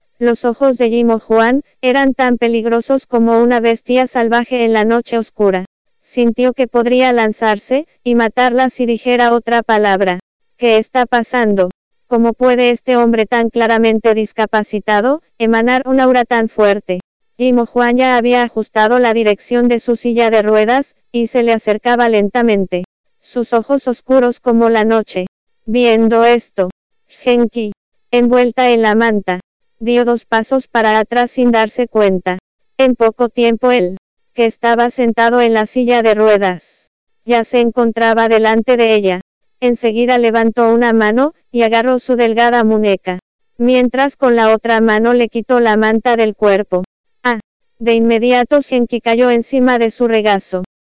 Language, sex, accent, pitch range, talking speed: English, female, American, 220-245 Hz, 150 wpm